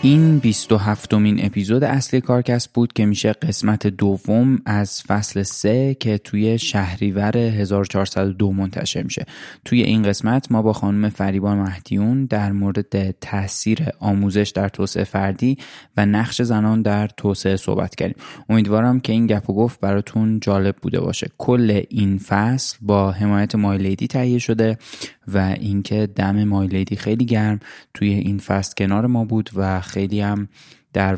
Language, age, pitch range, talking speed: Persian, 20-39, 100-110 Hz, 145 wpm